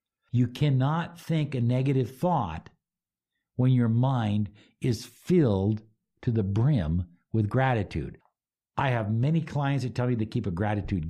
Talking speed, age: 145 wpm, 60-79